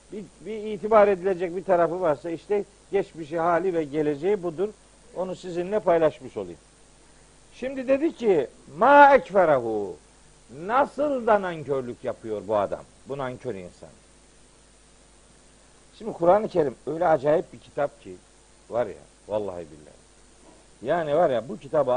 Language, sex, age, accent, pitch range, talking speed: Turkish, male, 60-79, native, 170-230 Hz, 130 wpm